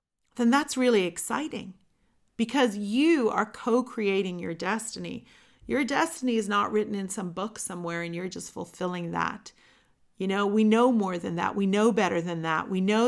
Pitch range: 185-220 Hz